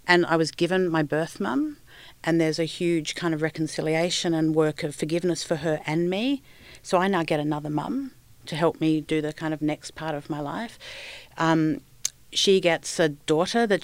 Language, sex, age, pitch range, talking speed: English, female, 50-69, 160-195 Hz, 200 wpm